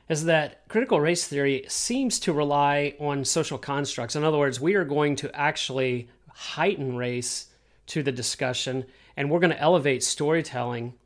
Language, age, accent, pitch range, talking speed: English, 40-59, American, 130-150 Hz, 165 wpm